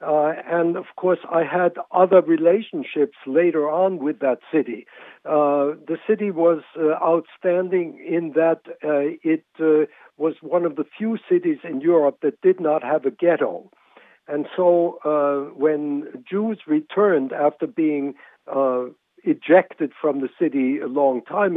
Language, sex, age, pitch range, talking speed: English, male, 60-79, 150-180 Hz, 150 wpm